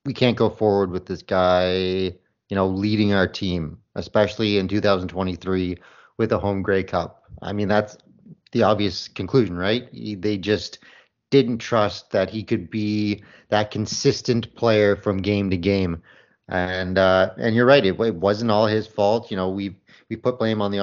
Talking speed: 175 wpm